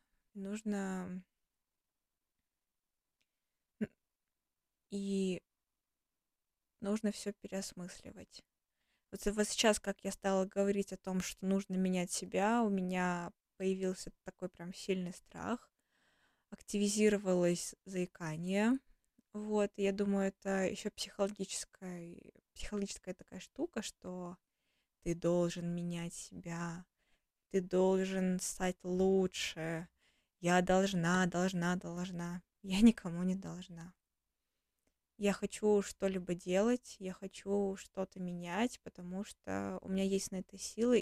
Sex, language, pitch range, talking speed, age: female, Russian, 180-205 Hz, 100 wpm, 20-39